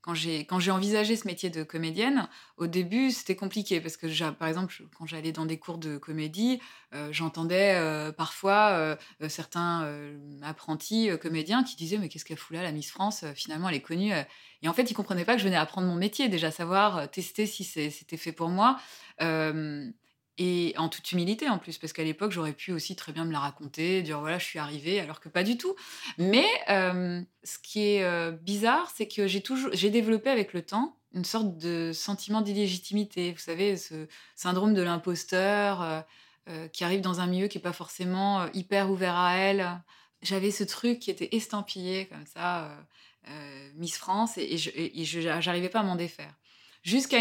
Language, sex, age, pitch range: French, female, 20-39, 160-205 Hz